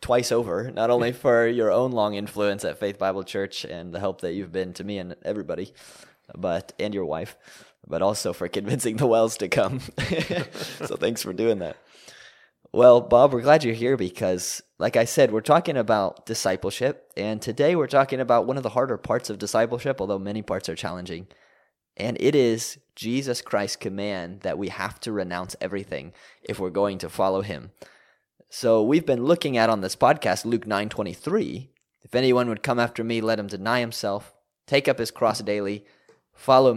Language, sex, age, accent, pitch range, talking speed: English, male, 20-39, American, 100-120 Hz, 190 wpm